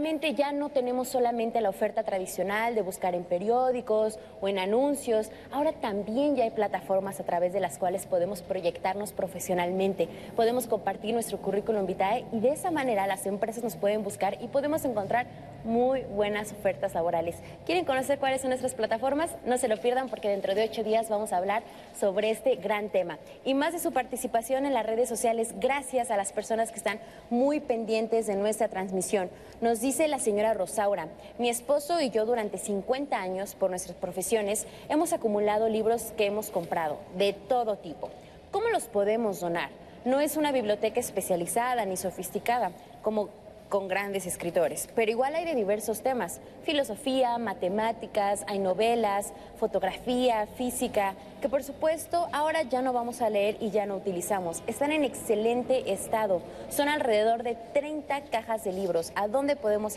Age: 20-39